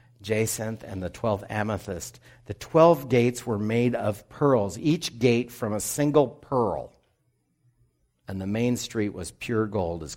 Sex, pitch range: male, 105-145 Hz